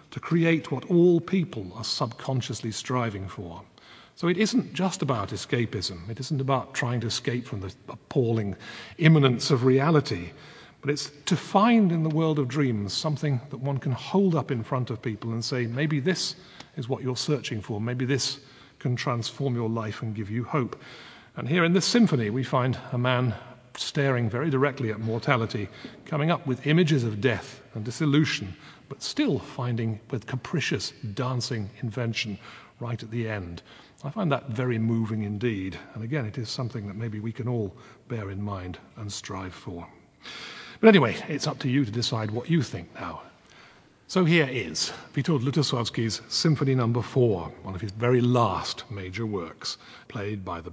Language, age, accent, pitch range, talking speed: English, 40-59, British, 110-145 Hz, 175 wpm